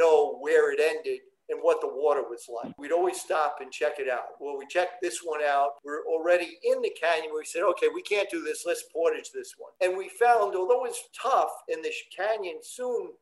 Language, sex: English, male